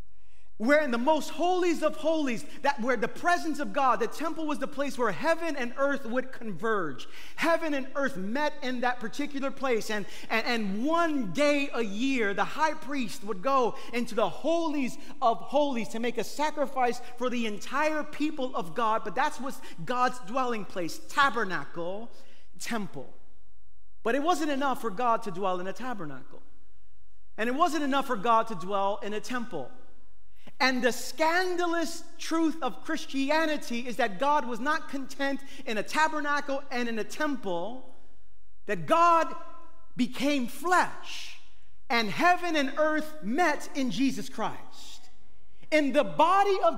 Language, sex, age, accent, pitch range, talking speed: English, male, 30-49, American, 230-300 Hz, 160 wpm